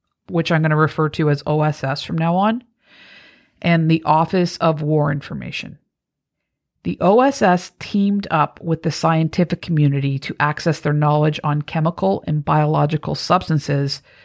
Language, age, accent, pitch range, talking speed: English, 50-69, American, 150-175 Hz, 145 wpm